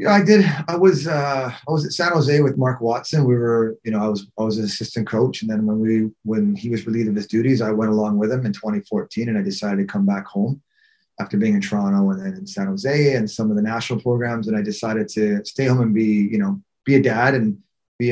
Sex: male